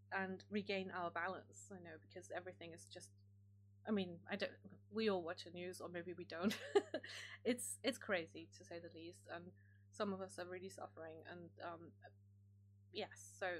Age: 20-39